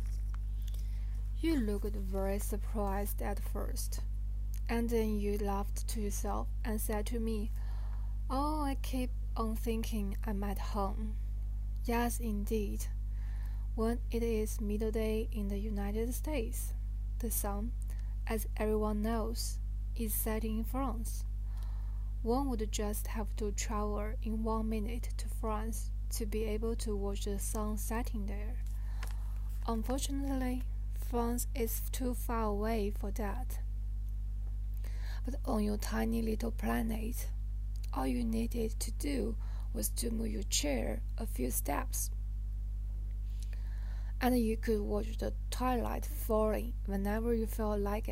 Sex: female